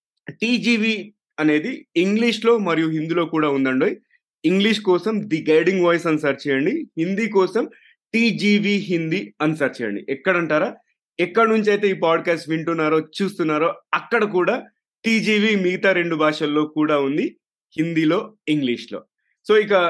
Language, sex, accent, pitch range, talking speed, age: Telugu, male, native, 150-210 Hz, 120 wpm, 30-49